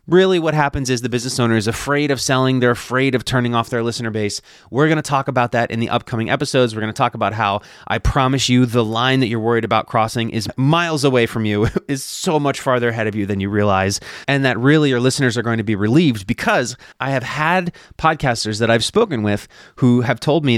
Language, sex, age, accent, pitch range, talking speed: English, male, 30-49, American, 115-145 Hz, 235 wpm